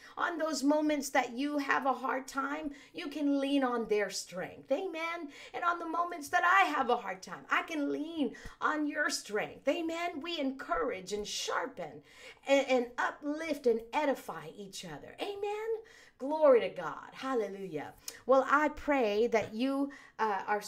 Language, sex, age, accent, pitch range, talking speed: English, female, 50-69, American, 205-305 Hz, 165 wpm